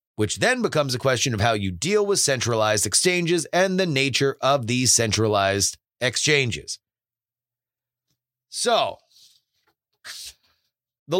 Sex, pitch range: male, 110-150 Hz